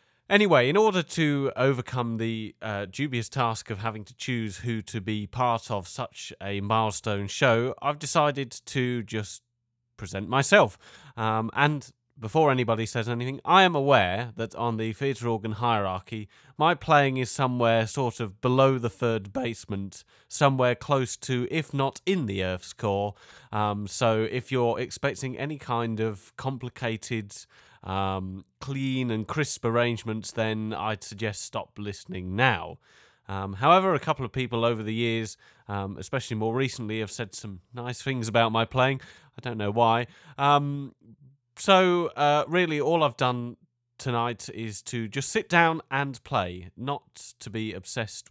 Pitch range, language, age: 110-135 Hz, English, 30-49